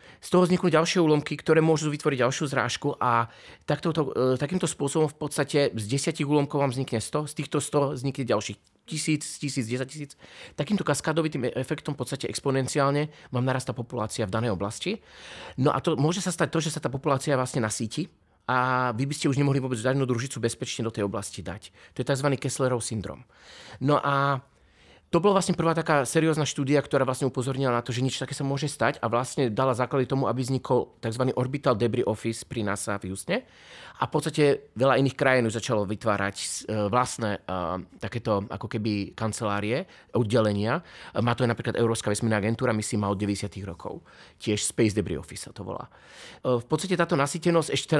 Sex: male